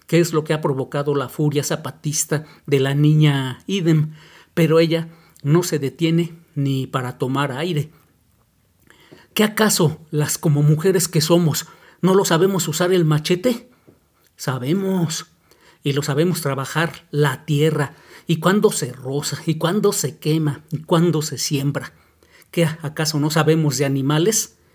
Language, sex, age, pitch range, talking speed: Spanish, male, 40-59, 145-170 Hz, 145 wpm